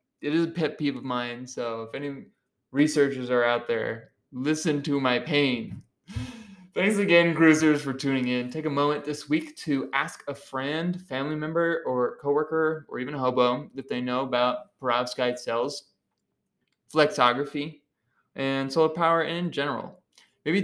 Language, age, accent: English, 20-39, American